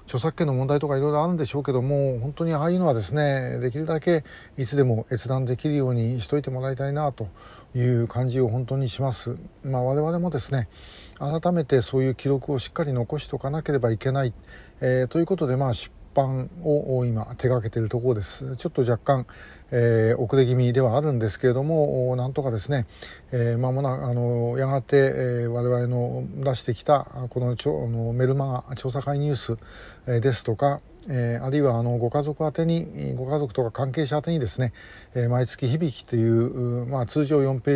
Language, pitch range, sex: Japanese, 120-140 Hz, male